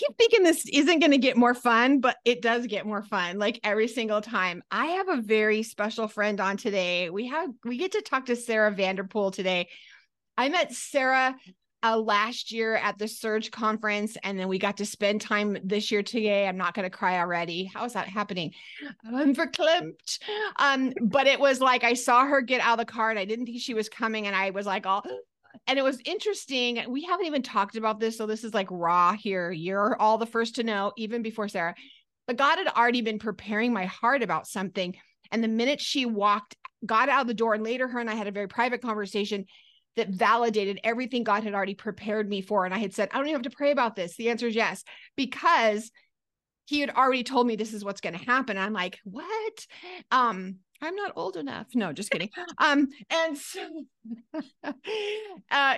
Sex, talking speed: female, 215 wpm